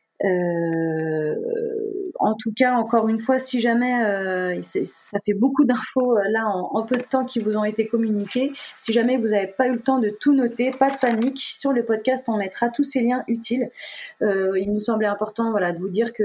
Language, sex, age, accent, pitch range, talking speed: French, female, 20-39, French, 205-255 Hz, 220 wpm